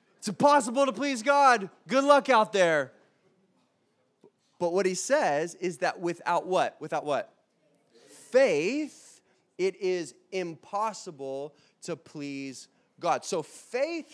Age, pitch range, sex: 20-39, 150-200 Hz, male